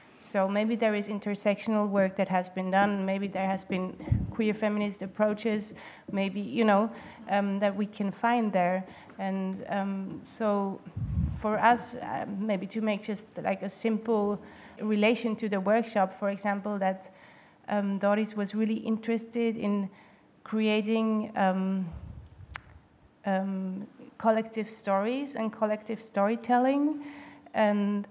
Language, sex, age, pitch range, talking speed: English, female, 30-49, 195-220 Hz, 130 wpm